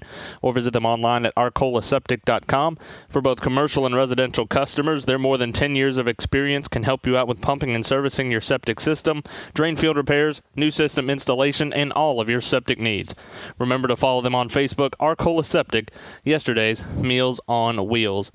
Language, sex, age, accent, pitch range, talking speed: English, male, 30-49, American, 125-145 Hz, 175 wpm